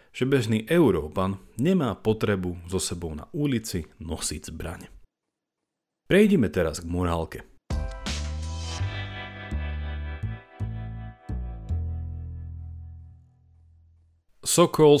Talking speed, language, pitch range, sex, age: 65 wpm, Slovak, 85-130 Hz, male, 40-59